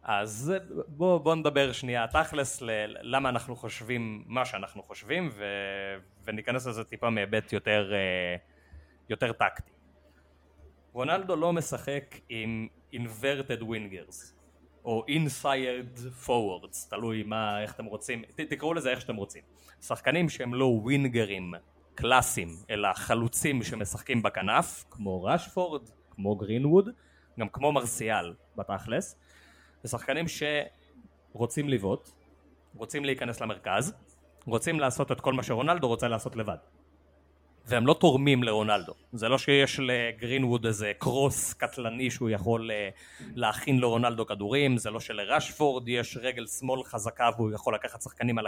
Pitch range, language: 105-135 Hz, Hebrew